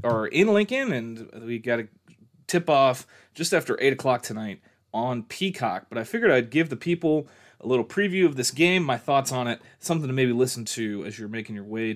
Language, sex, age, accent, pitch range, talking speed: English, male, 30-49, American, 115-145 Hz, 210 wpm